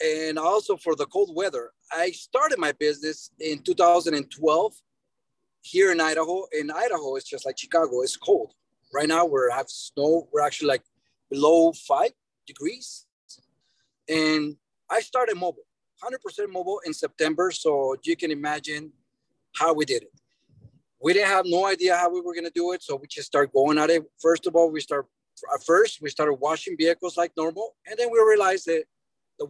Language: English